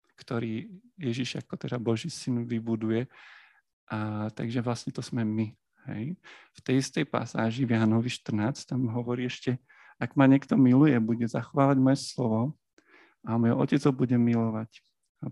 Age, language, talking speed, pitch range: 50-69, Slovak, 145 wpm, 115-130 Hz